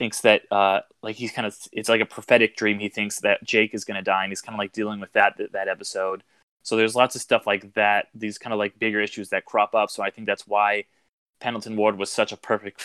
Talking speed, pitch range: 270 wpm, 100-115 Hz